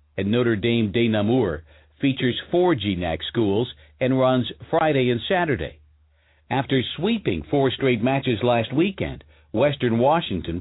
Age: 60-79